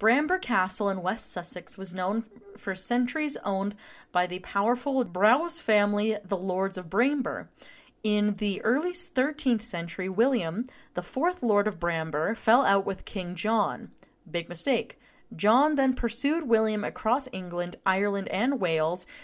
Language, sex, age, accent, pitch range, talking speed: English, female, 30-49, American, 180-245 Hz, 145 wpm